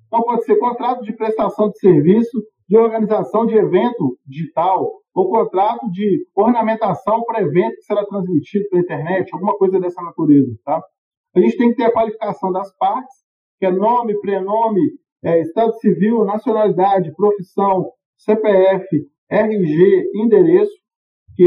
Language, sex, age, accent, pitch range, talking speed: Portuguese, male, 50-69, Brazilian, 175-220 Hz, 135 wpm